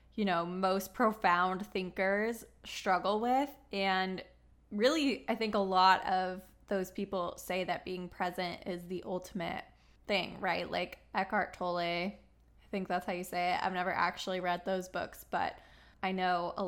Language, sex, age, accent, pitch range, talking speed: English, female, 20-39, American, 185-210 Hz, 160 wpm